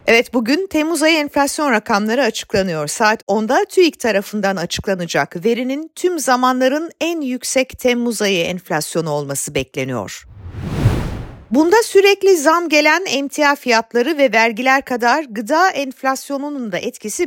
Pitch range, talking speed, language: 220-310 Hz, 120 wpm, Turkish